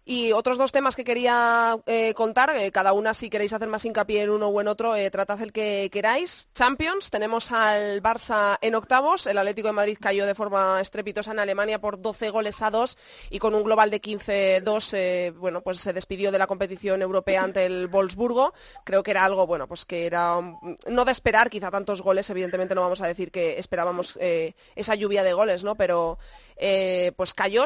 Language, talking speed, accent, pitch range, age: Spanish, 210 wpm, Spanish, 195-235 Hz, 20-39